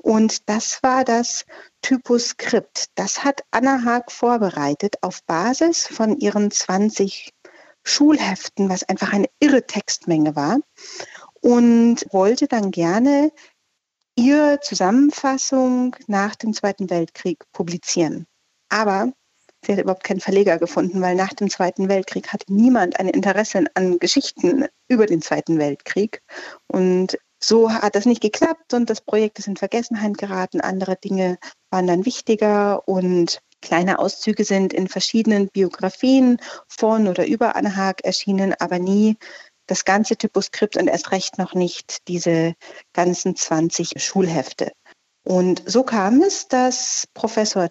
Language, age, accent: German, 40-59, German